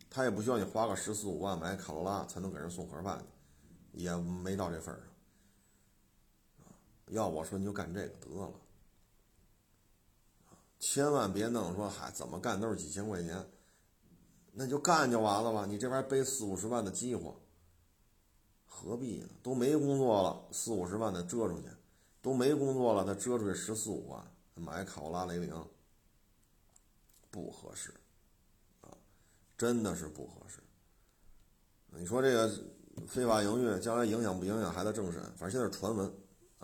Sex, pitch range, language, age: male, 90-115 Hz, Chinese, 50-69